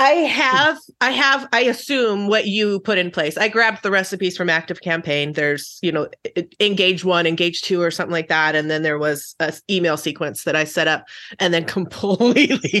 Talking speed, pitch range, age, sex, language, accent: 200 wpm, 180-230 Hz, 30-49, female, English, American